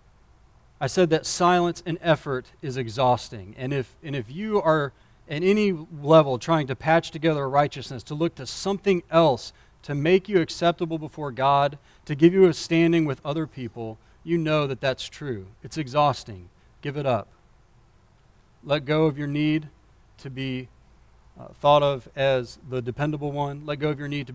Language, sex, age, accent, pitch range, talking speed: English, male, 40-59, American, 125-155 Hz, 170 wpm